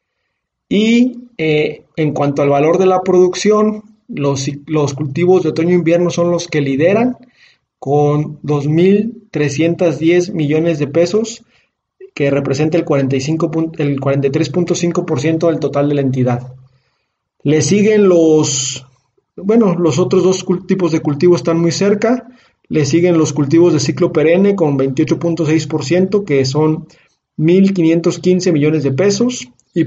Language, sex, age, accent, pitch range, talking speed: Spanish, male, 30-49, Mexican, 145-185 Hz, 130 wpm